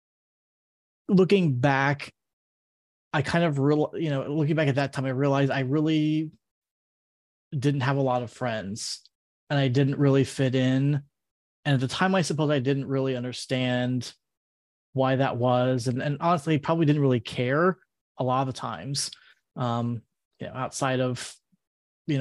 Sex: male